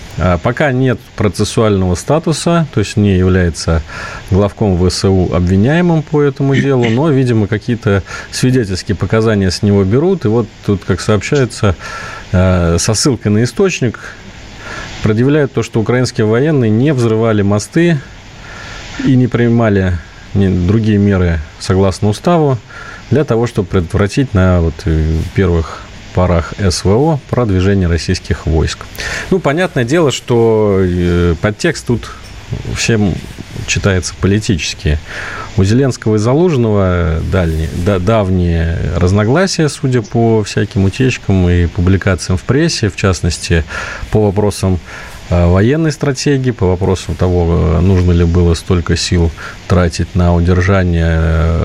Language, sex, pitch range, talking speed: Russian, male, 90-125 Hz, 115 wpm